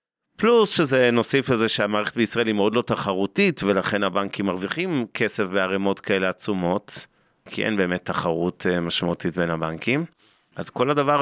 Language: Hebrew